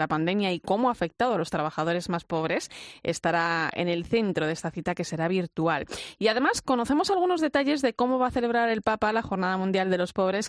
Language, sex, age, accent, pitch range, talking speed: Spanish, female, 30-49, Spanish, 175-225 Hz, 225 wpm